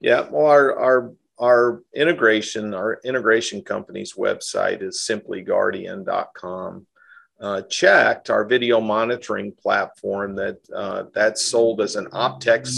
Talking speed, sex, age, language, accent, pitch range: 115 wpm, male, 50-69, English, American, 105-120 Hz